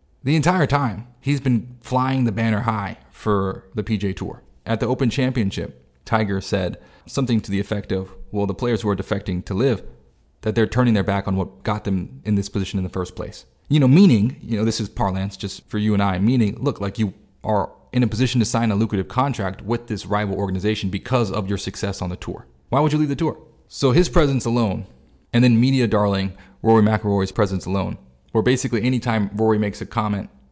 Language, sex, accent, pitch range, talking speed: English, male, American, 95-120 Hz, 215 wpm